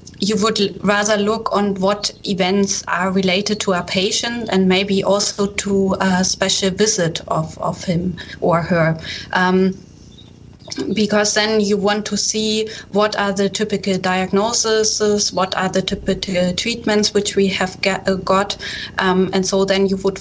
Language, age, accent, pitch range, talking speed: English, 20-39, German, 170-200 Hz, 155 wpm